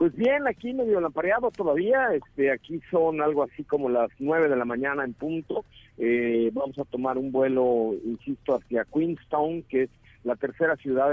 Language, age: Spanish, 50-69